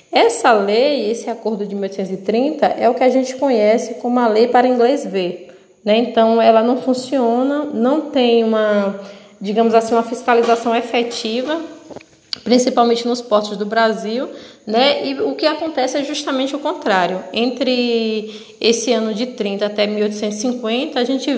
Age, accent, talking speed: 20-39, Brazilian, 150 wpm